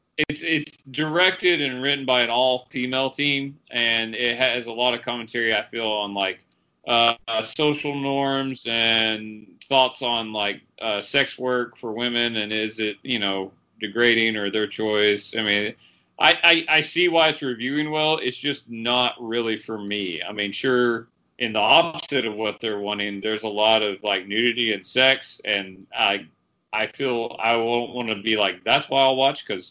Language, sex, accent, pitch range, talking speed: English, male, American, 105-140 Hz, 185 wpm